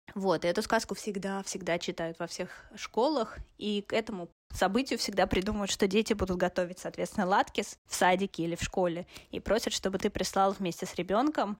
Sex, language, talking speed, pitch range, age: female, Russian, 175 wpm, 190-230 Hz, 20-39